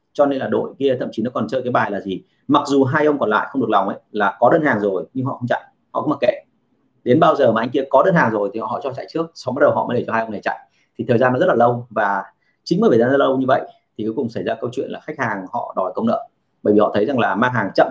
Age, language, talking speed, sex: 30-49, Vietnamese, 335 wpm, male